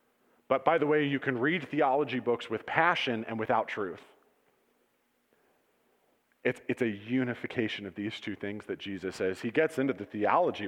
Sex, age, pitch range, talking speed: male, 40-59, 110-145 Hz, 170 wpm